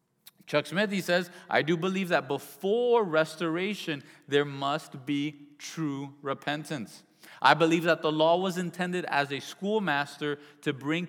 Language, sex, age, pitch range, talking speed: English, male, 30-49, 145-185 Hz, 145 wpm